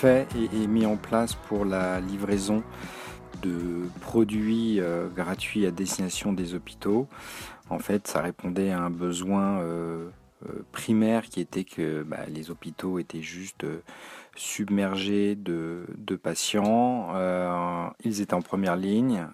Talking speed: 115 wpm